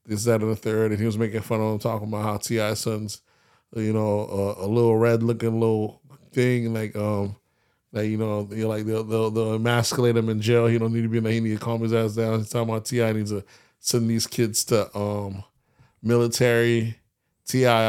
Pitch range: 110-130 Hz